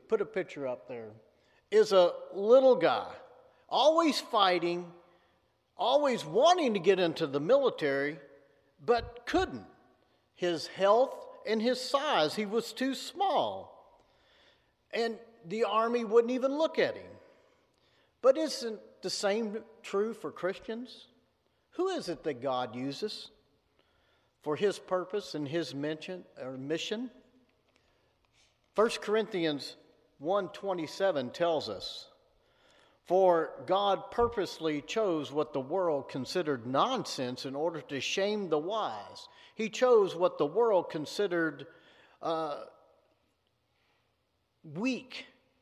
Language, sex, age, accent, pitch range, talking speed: English, male, 50-69, American, 150-235 Hz, 115 wpm